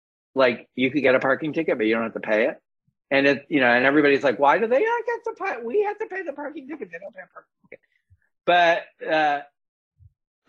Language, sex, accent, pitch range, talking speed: English, male, American, 130-190 Hz, 245 wpm